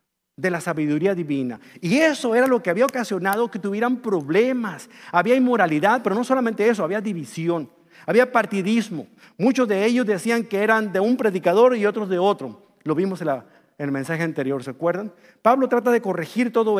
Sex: male